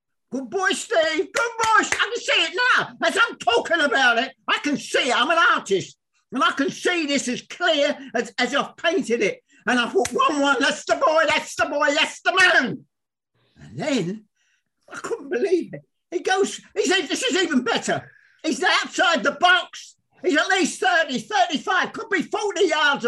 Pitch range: 220-350 Hz